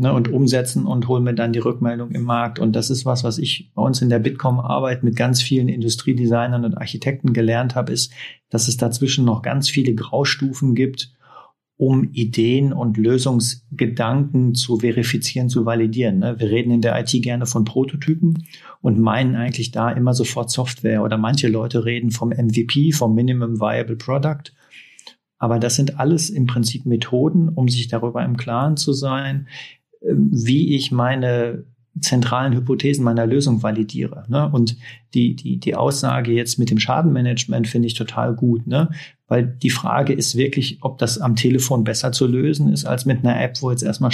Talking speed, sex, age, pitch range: 170 wpm, male, 40-59, 120-135 Hz